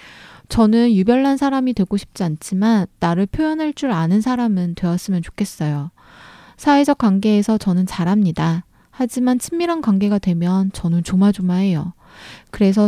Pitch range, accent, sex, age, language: 180-230 Hz, native, female, 20-39, Korean